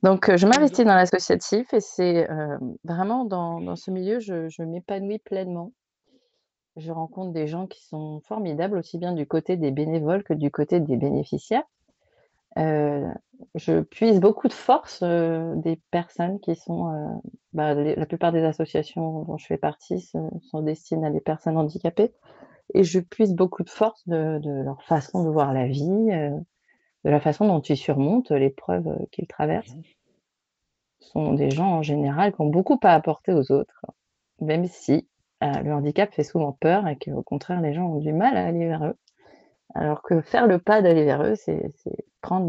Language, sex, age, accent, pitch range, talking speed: French, female, 30-49, French, 155-195 Hz, 185 wpm